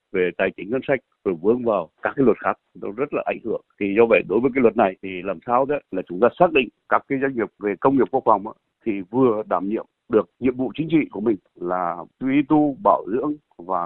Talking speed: 260 wpm